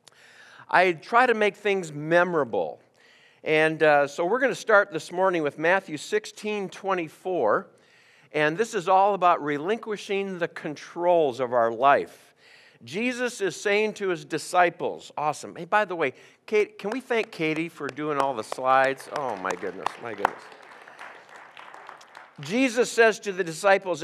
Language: English